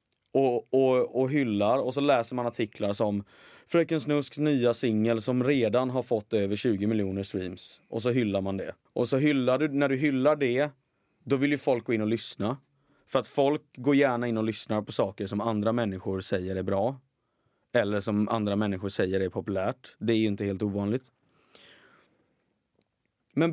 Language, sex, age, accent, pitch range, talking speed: Swedish, male, 30-49, native, 110-140 Hz, 185 wpm